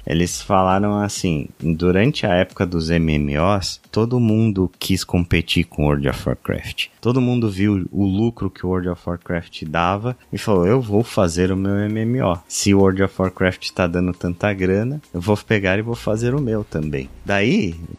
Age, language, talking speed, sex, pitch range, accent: 30-49, Portuguese, 185 wpm, male, 90-115 Hz, Brazilian